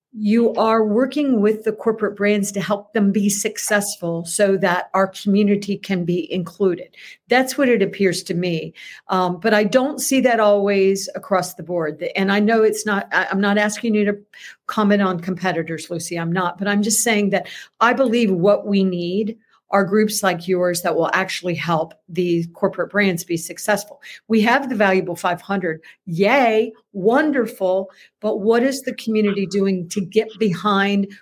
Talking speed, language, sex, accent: 175 wpm, English, female, American